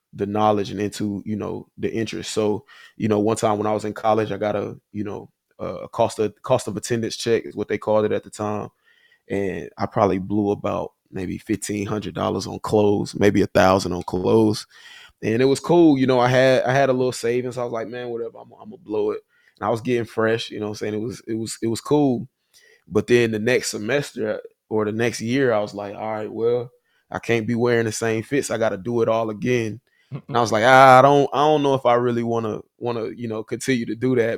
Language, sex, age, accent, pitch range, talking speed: English, male, 20-39, American, 105-120 Hz, 250 wpm